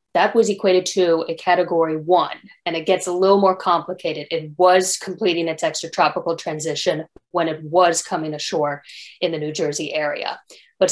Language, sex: English, female